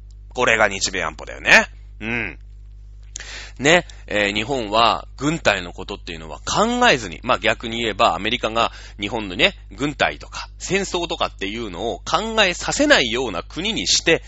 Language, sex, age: Japanese, male, 30-49